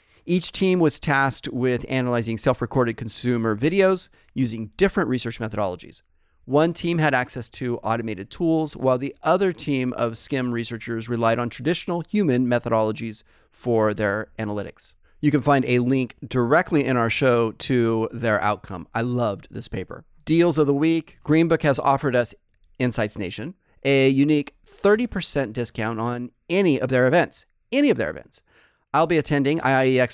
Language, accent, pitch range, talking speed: English, American, 115-150 Hz, 155 wpm